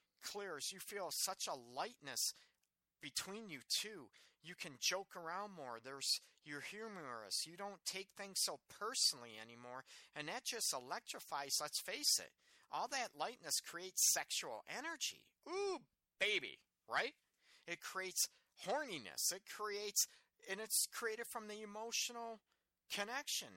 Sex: male